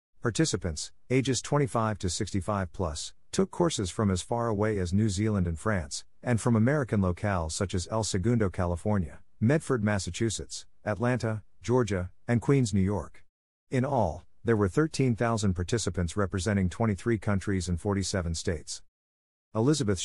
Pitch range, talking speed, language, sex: 90-115 Hz, 140 wpm, English, male